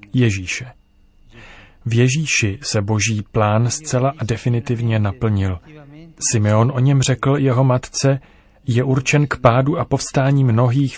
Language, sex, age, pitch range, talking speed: Czech, male, 30-49, 110-130 Hz, 125 wpm